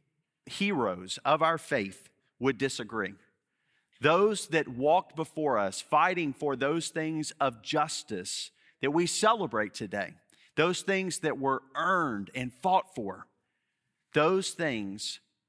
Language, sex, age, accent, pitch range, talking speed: English, male, 40-59, American, 130-175 Hz, 120 wpm